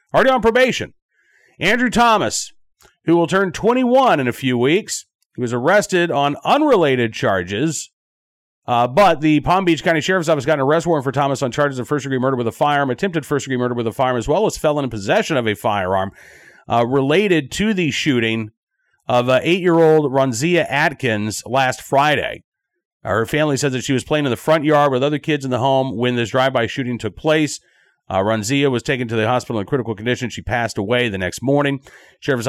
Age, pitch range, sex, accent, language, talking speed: 40-59, 120-165 Hz, male, American, English, 200 wpm